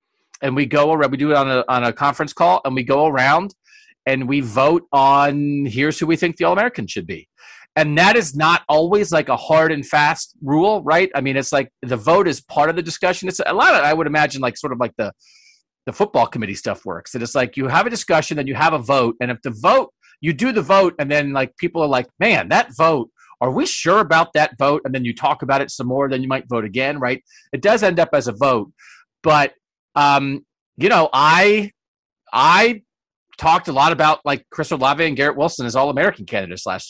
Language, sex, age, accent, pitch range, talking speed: English, male, 40-59, American, 130-165 Hz, 235 wpm